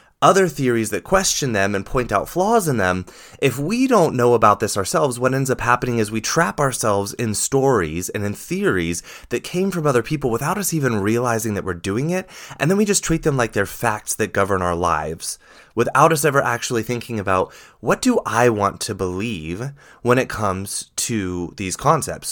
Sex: male